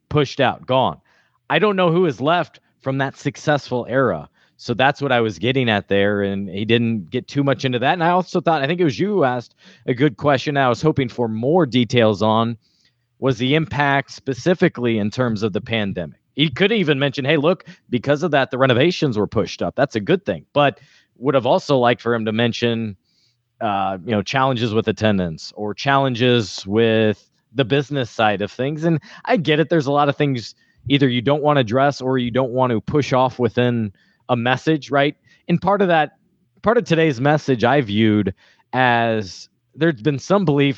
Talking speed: 205 wpm